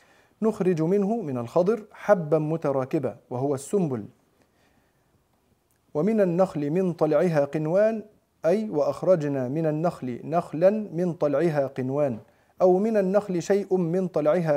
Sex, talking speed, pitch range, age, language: male, 110 wpm, 145-190 Hz, 40-59, Arabic